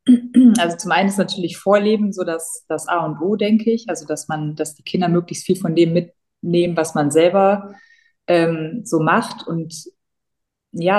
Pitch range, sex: 160-190 Hz, female